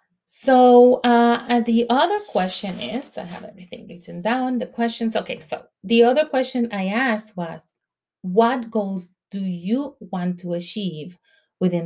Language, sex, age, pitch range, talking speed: English, female, 30-49, 185-240 Hz, 145 wpm